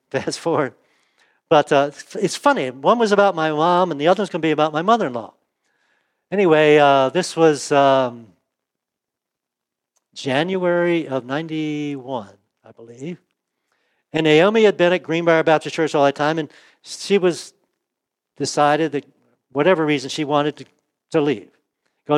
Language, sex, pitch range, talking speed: English, male, 140-175 Hz, 150 wpm